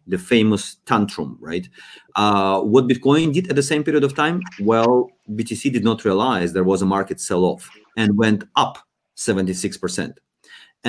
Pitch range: 95-125 Hz